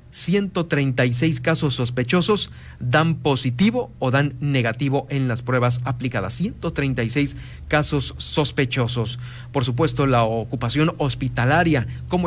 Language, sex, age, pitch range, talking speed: Spanish, male, 40-59, 120-150 Hz, 105 wpm